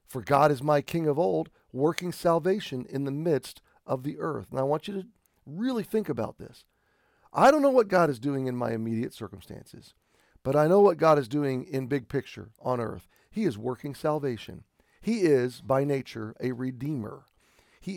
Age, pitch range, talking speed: 40-59, 120-160 Hz, 195 wpm